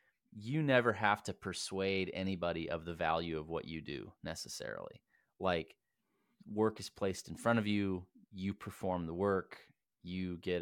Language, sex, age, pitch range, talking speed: English, male, 30-49, 90-105 Hz, 160 wpm